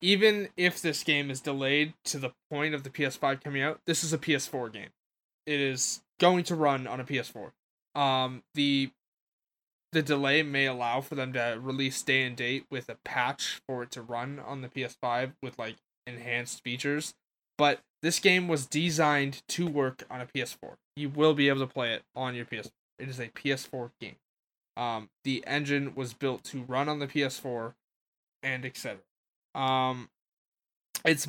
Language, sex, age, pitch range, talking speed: English, male, 10-29, 130-160 Hz, 180 wpm